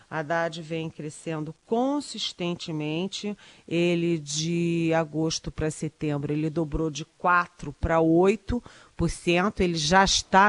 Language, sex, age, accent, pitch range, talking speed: Portuguese, female, 40-59, Brazilian, 160-200 Hz, 110 wpm